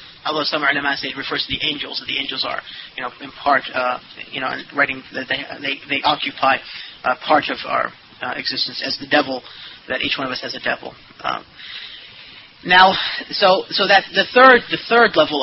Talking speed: 200 wpm